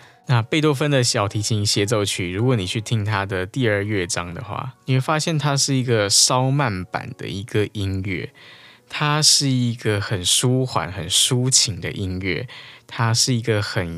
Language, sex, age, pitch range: Chinese, male, 20-39, 100-130 Hz